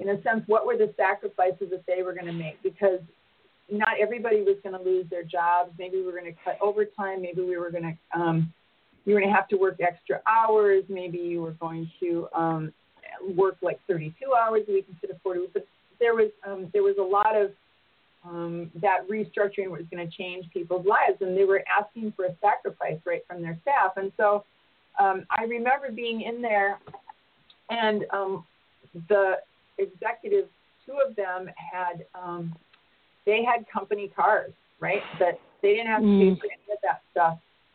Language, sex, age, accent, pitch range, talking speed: English, female, 30-49, American, 175-215 Hz, 190 wpm